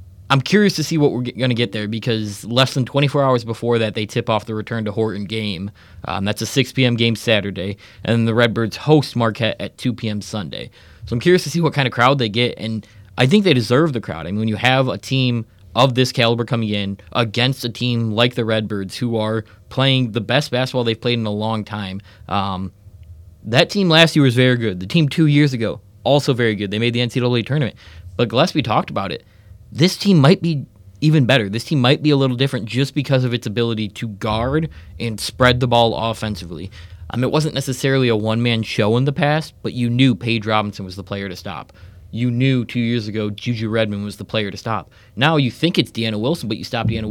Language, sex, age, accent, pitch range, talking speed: English, male, 20-39, American, 105-130 Hz, 235 wpm